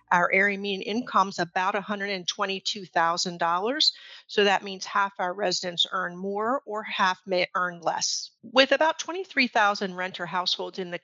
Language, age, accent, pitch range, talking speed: English, 50-69, American, 180-215 Hz, 145 wpm